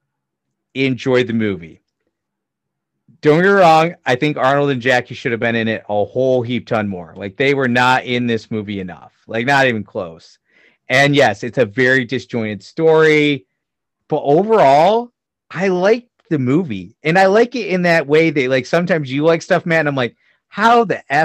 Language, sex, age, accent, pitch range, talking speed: English, male, 30-49, American, 120-170 Hz, 185 wpm